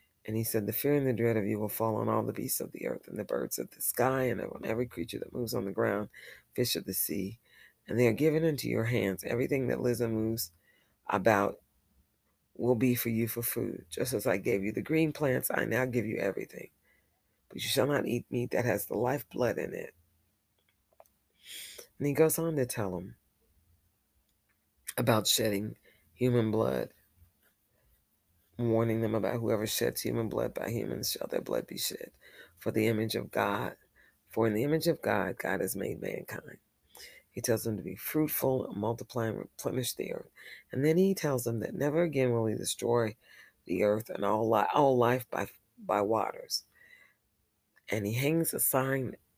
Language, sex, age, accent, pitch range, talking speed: English, female, 40-59, American, 105-125 Hz, 195 wpm